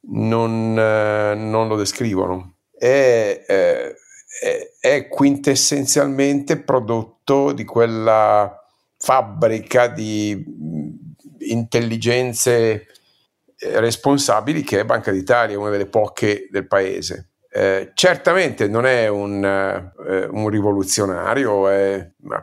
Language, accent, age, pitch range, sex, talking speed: Italian, native, 50-69, 100-135 Hz, male, 85 wpm